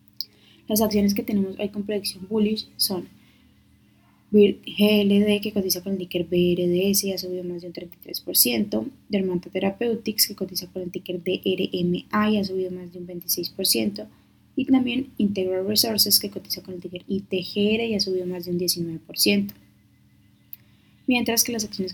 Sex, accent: female, Colombian